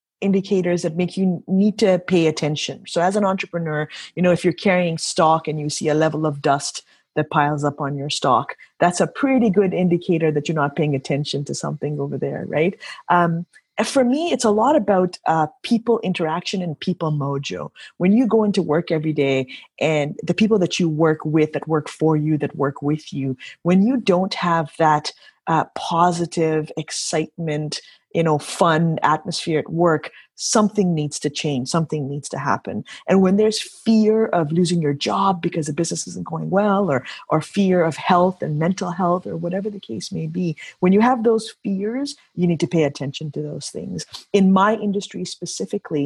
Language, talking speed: English, 195 wpm